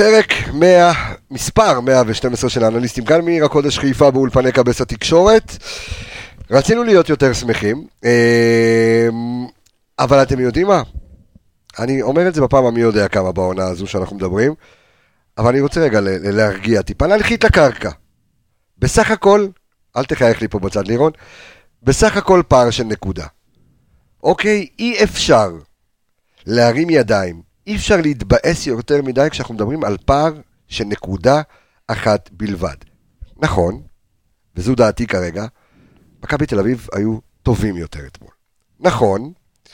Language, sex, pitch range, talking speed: Hebrew, male, 105-155 Hz, 125 wpm